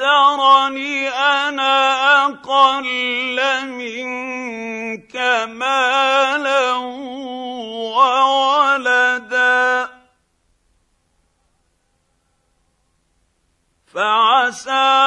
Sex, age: male, 50-69